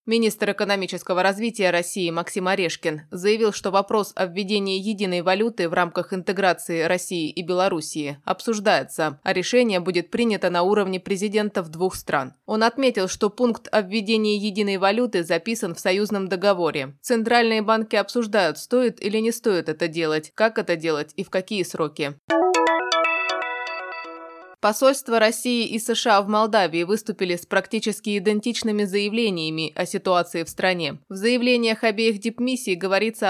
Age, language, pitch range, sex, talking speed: 20-39, Russian, 185-225 Hz, female, 140 wpm